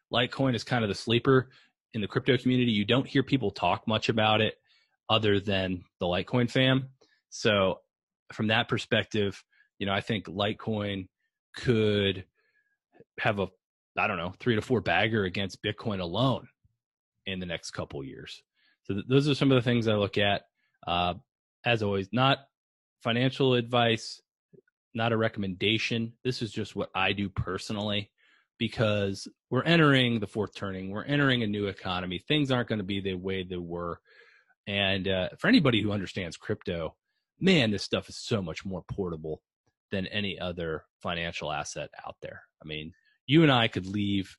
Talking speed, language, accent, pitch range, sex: 170 wpm, English, American, 90-120 Hz, male